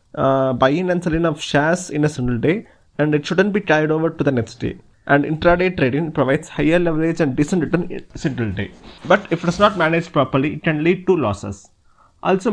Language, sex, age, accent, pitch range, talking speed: English, male, 20-39, Indian, 140-175 Hz, 215 wpm